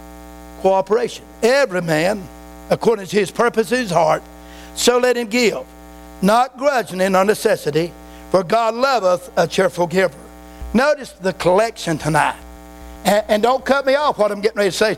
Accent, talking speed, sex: American, 165 wpm, male